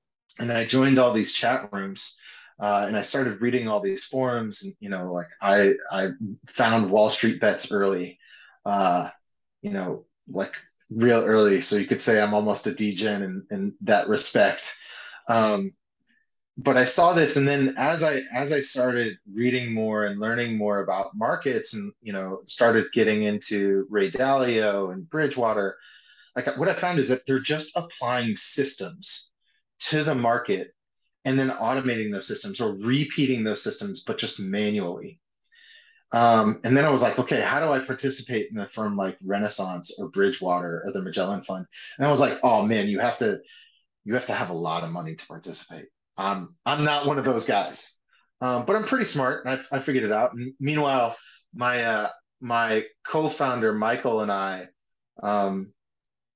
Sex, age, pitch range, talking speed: male, 30-49, 105-140 Hz, 180 wpm